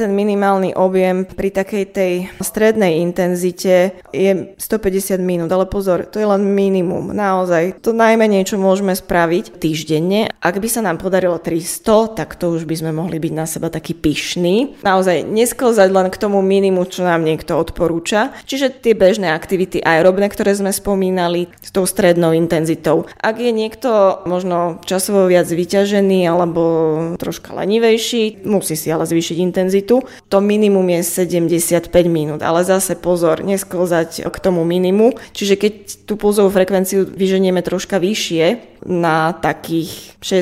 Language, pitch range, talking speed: Slovak, 170-200 Hz, 150 wpm